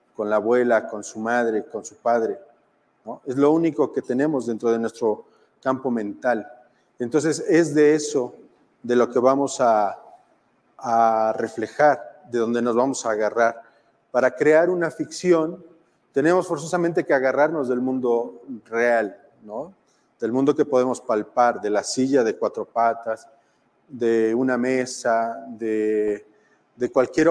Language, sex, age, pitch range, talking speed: Spanish, male, 40-59, 120-150 Hz, 145 wpm